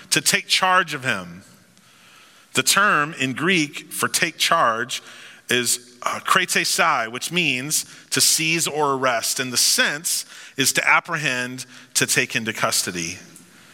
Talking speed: 135 wpm